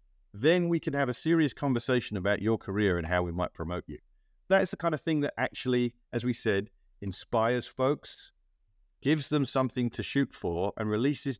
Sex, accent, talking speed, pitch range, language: male, British, 195 wpm, 95-135 Hz, English